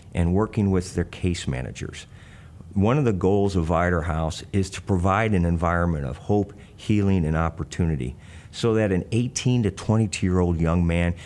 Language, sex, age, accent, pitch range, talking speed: English, male, 50-69, American, 80-95 Hz, 165 wpm